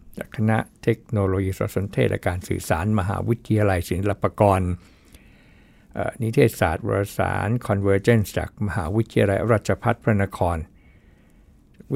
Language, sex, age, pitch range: Thai, male, 60-79, 90-115 Hz